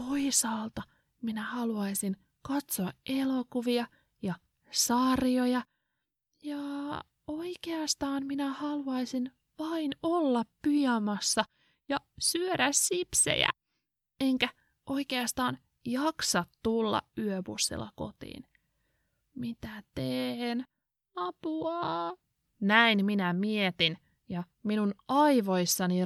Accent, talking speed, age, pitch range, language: native, 70 wpm, 20-39, 185-270 Hz, Finnish